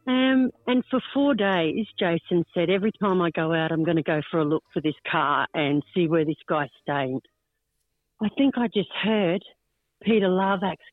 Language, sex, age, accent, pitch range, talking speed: English, female, 50-69, Australian, 160-205 Hz, 190 wpm